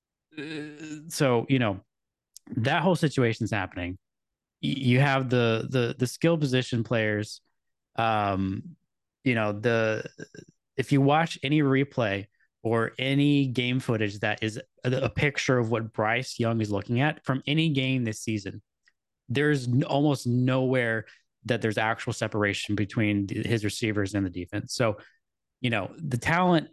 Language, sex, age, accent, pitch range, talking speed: English, male, 20-39, American, 110-135 Hz, 145 wpm